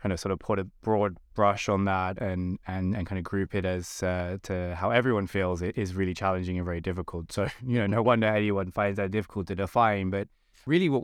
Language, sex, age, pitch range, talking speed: English, male, 20-39, 95-105 Hz, 235 wpm